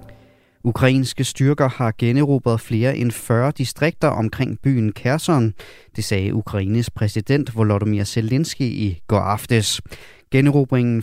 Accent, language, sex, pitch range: native, Danish, male, 110-130 Hz